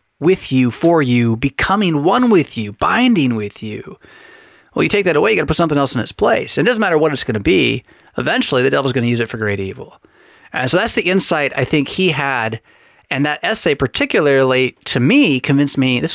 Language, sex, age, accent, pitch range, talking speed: English, male, 30-49, American, 115-150 Hz, 225 wpm